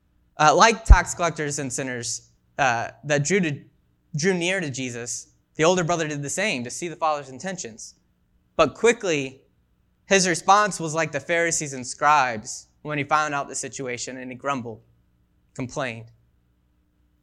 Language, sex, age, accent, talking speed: English, male, 20-39, American, 155 wpm